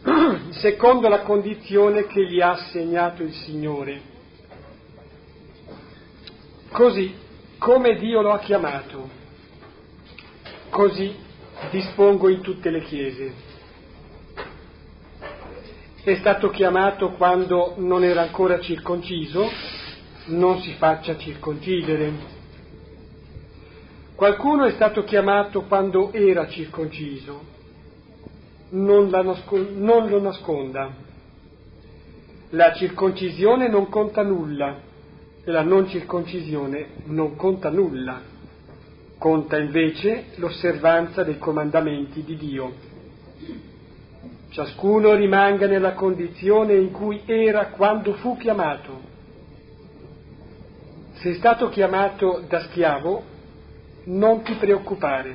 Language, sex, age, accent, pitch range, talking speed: Italian, male, 40-59, native, 150-200 Hz, 90 wpm